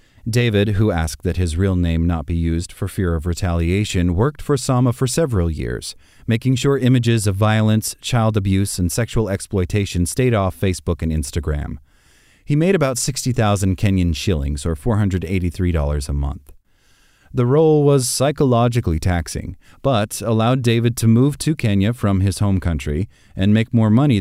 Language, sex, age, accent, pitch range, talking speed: English, male, 30-49, American, 85-115 Hz, 160 wpm